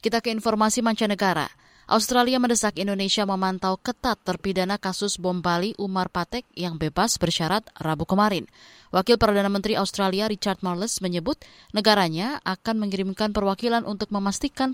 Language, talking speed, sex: Indonesian, 135 wpm, female